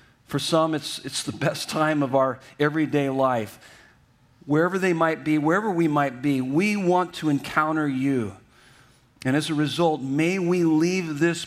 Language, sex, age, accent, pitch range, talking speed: English, male, 50-69, American, 135-160 Hz, 165 wpm